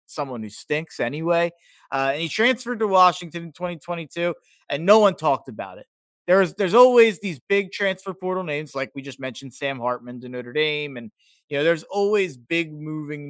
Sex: male